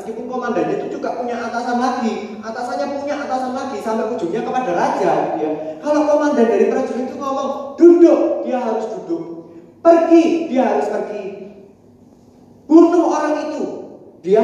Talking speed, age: 140 wpm, 30-49